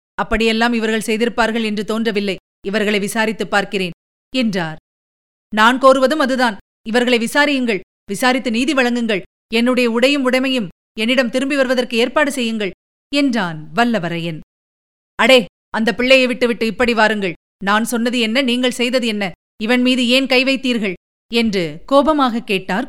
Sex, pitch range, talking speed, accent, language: female, 215-270 Hz, 125 wpm, native, Tamil